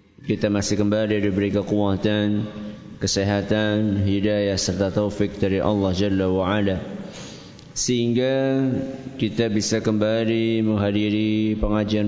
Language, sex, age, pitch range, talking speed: Malay, male, 20-39, 105-115 Hz, 100 wpm